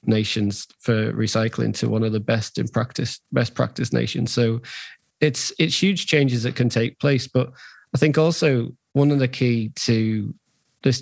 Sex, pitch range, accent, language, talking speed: male, 115-135 Hz, British, English, 175 wpm